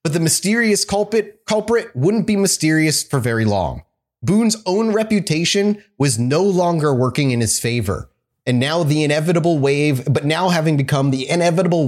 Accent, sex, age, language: American, male, 30-49, English